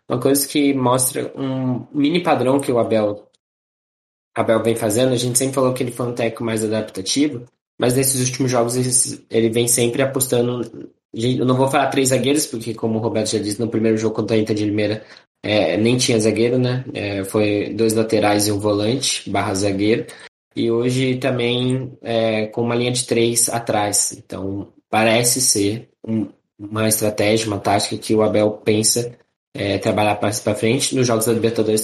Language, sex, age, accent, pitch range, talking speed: Portuguese, male, 20-39, Brazilian, 110-125 Hz, 180 wpm